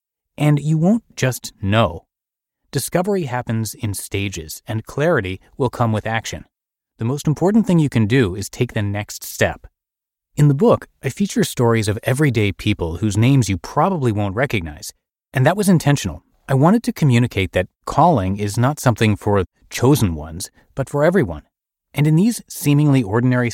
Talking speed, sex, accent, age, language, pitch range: 170 wpm, male, American, 30-49, English, 100-145 Hz